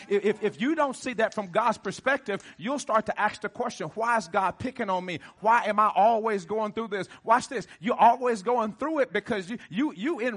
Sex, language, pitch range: male, English, 215-255 Hz